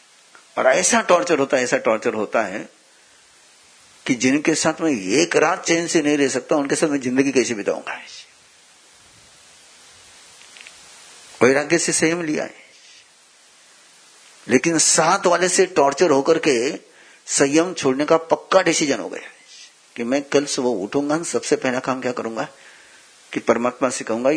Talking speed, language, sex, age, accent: 145 wpm, Hindi, male, 50-69, native